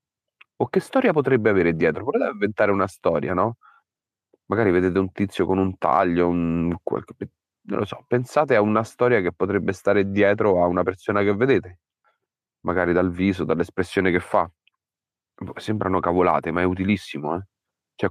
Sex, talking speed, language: male, 160 wpm, Italian